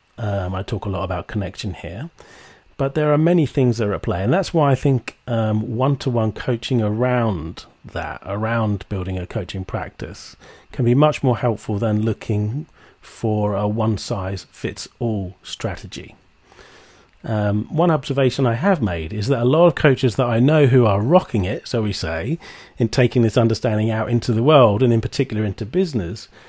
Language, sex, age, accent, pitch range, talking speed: English, male, 40-59, British, 105-145 Hz, 175 wpm